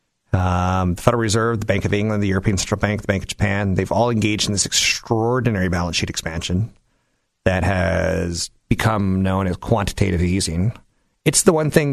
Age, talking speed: 30-49, 180 wpm